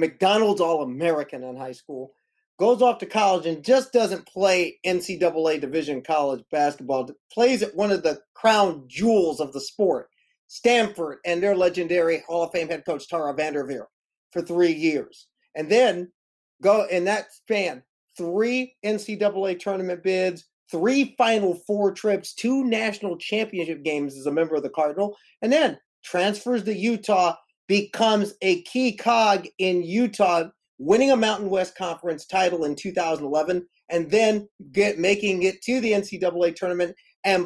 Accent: American